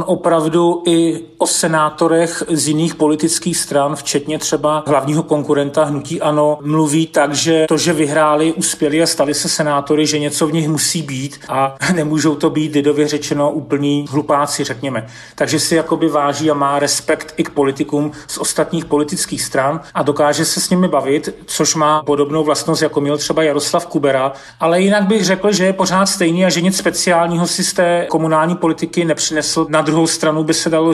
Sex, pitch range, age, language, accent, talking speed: male, 145-160 Hz, 40-59, Czech, native, 180 wpm